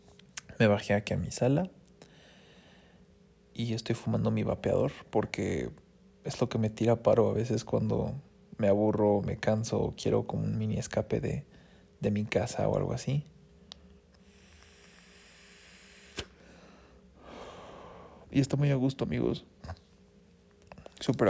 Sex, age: male, 20-39